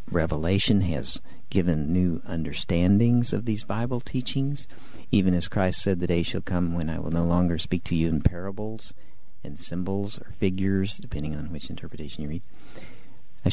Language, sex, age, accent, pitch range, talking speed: English, male, 50-69, American, 80-105 Hz, 170 wpm